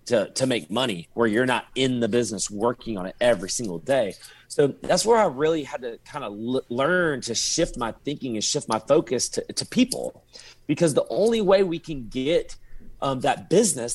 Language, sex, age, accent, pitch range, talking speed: English, male, 30-49, American, 125-165 Hz, 200 wpm